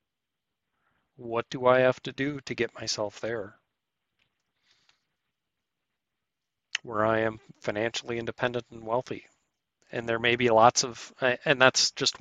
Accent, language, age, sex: American, English, 40-59, male